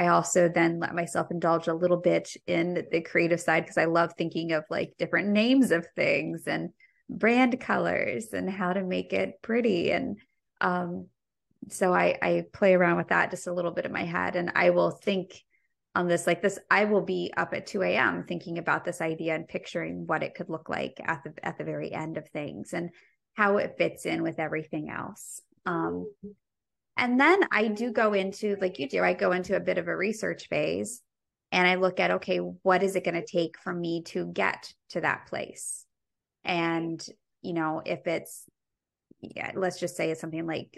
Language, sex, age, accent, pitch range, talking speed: English, female, 20-39, American, 160-185 Hz, 205 wpm